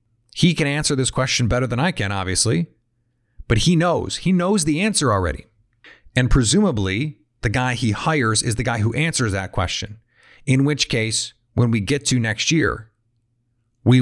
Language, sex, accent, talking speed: English, male, American, 175 wpm